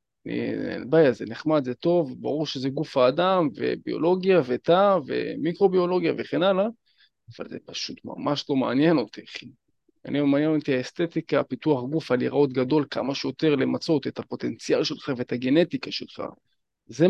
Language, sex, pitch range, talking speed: Hebrew, male, 130-165 Hz, 150 wpm